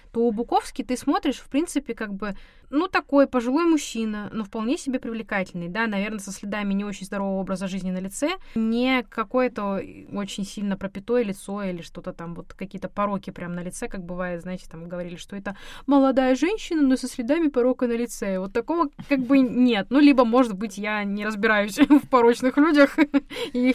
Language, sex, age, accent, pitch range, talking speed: Russian, female, 20-39, native, 195-255 Hz, 185 wpm